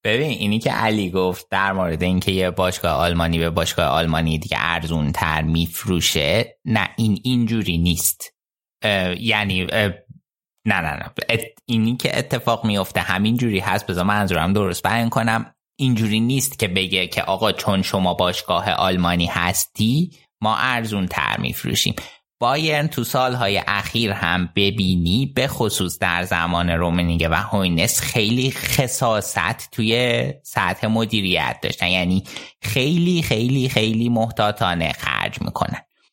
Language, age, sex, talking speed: Persian, 20-39, male, 140 wpm